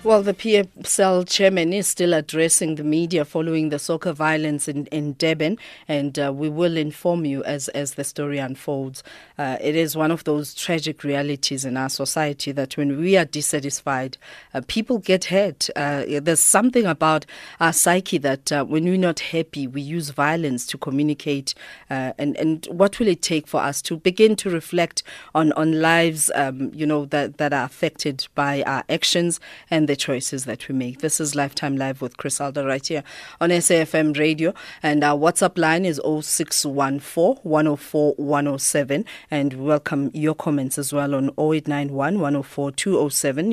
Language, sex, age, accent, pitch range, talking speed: English, female, 40-59, South African, 140-165 Hz, 170 wpm